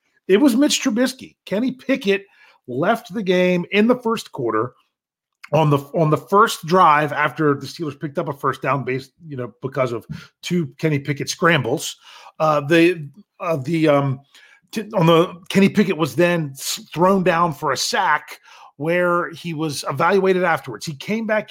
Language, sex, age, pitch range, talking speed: English, male, 30-49, 135-175 Hz, 175 wpm